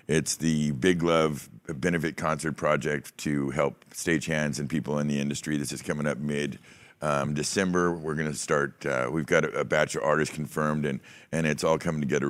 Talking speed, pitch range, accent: 195 wpm, 70-80 Hz, American